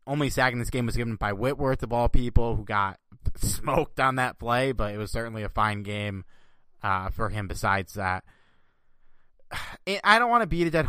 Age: 20-39